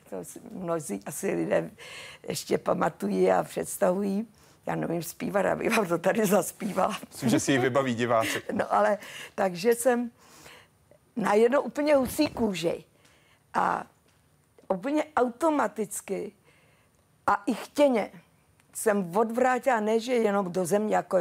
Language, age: Czech, 50-69